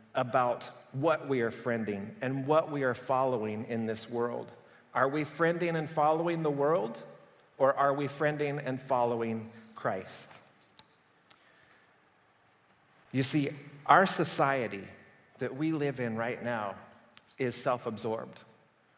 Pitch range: 125-155 Hz